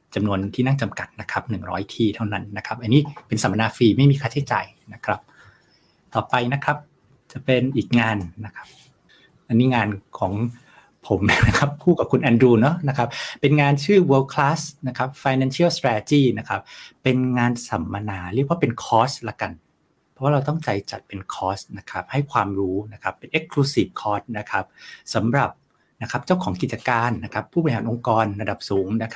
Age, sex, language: 60-79, male, Thai